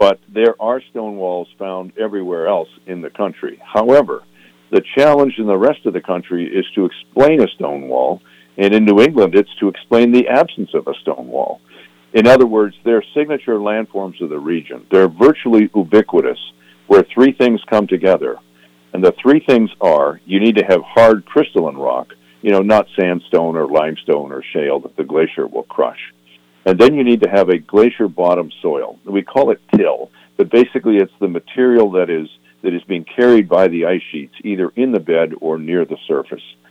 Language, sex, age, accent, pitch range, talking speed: English, male, 50-69, American, 75-110 Hz, 190 wpm